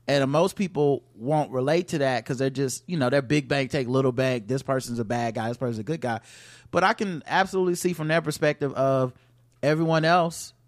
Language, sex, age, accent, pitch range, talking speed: English, male, 30-49, American, 125-150 Hz, 220 wpm